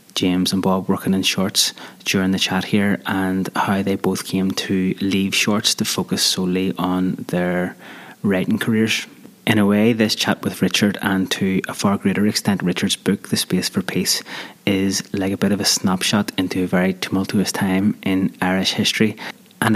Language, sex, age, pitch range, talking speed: English, male, 20-39, 95-105 Hz, 180 wpm